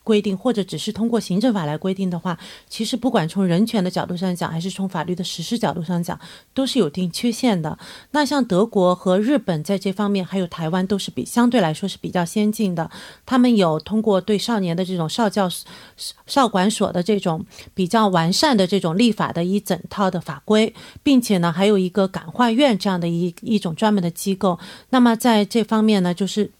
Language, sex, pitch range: Korean, female, 180-225 Hz